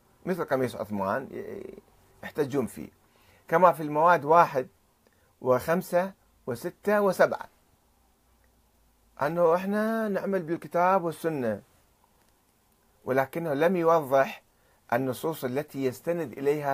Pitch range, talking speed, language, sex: 120-165 Hz, 85 wpm, Arabic, male